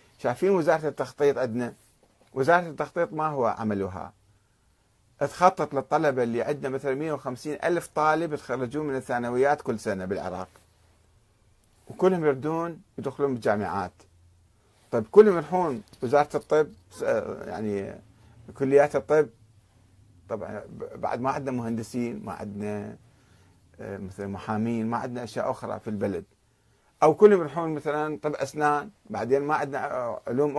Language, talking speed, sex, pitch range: Arabic, 120 wpm, male, 110-160 Hz